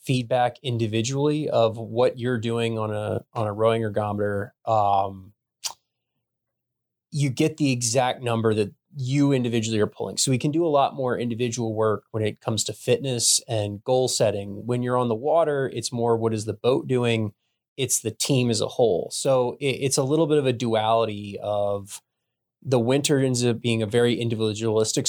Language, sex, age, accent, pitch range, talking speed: English, male, 20-39, American, 110-130 Hz, 180 wpm